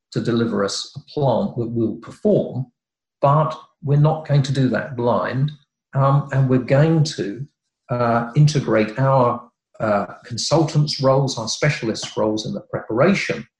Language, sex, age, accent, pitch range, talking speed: English, male, 50-69, British, 115-140 Hz, 150 wpm